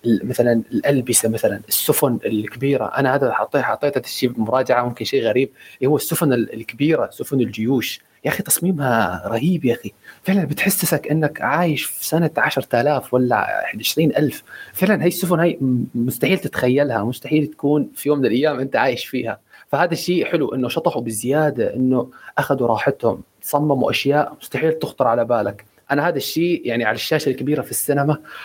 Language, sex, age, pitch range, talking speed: Arabic, male, 30-49, 120-155 Hz, 160 wpm